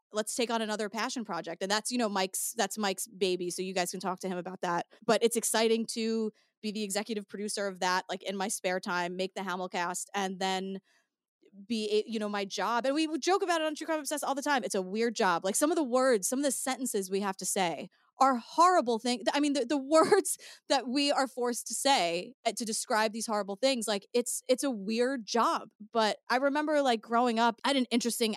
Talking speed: 235 wpm